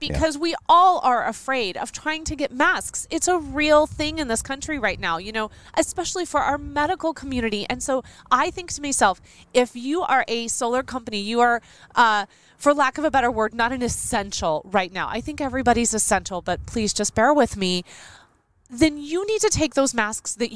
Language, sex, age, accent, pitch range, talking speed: English, female, 30-49, American, 215-305 Hz, 205 wpm